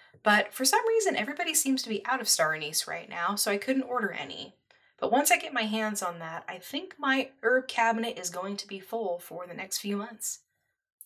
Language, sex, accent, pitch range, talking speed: English, female, American, 175-250 Hz, 230 wpm